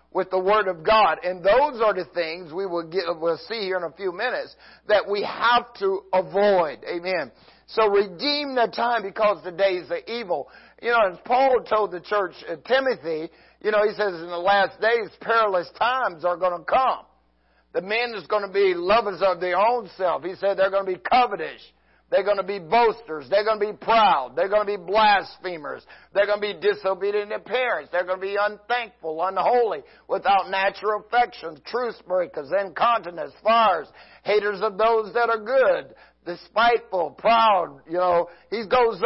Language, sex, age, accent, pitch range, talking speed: English, male, 50-69, American, 180-225 Hz, 190 wpm